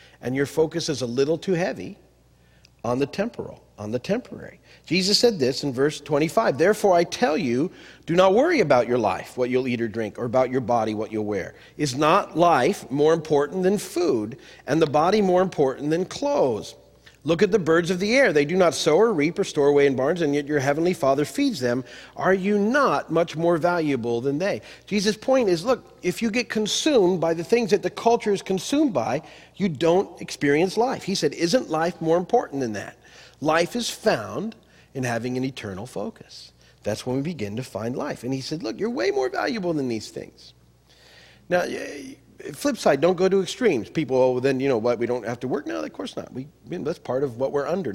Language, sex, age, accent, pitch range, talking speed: English, male, 40-59, American, 125-185 Hz, 215 wpm